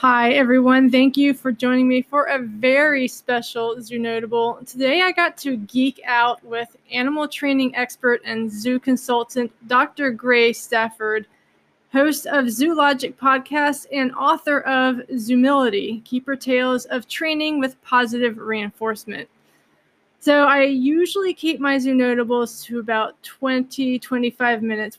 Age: 20-39